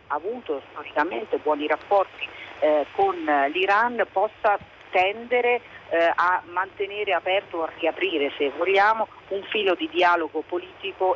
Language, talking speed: Italian, 125 wpm